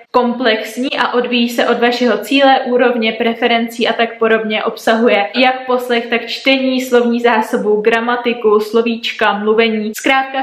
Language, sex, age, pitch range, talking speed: Czech, female, 20-39, 230-265 Hz, 130 wpm